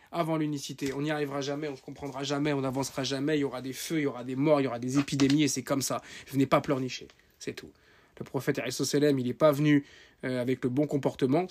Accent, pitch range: French, 130-150 Hz